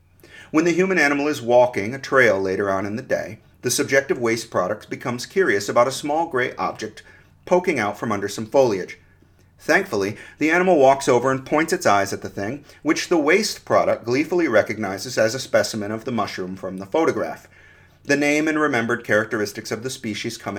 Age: 40-59